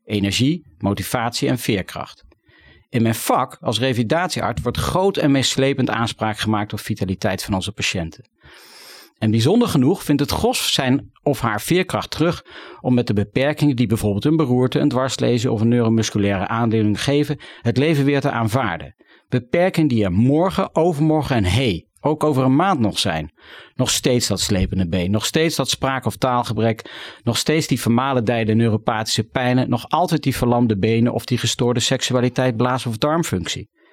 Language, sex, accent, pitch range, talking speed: Dutch, male, Dutch, 110-145 Hz, 165 wpm